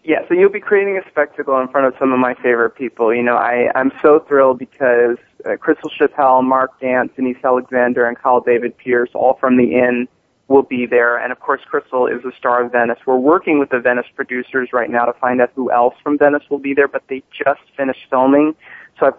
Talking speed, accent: 230 wpm, American